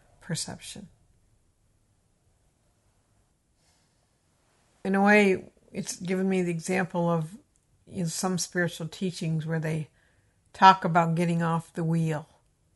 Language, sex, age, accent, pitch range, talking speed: English, female, 60-79, American, 150-175 Hz, 105 wpm